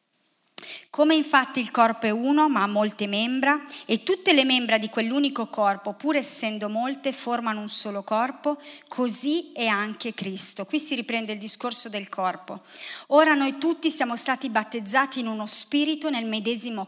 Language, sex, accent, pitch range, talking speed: Italian, female, native, 210-270 Hz, 165 wpm